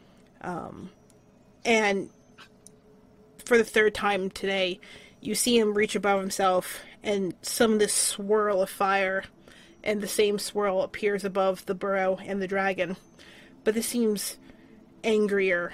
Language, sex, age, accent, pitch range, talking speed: English, female, 30-49, American, 195-220 Hz, 135 wpm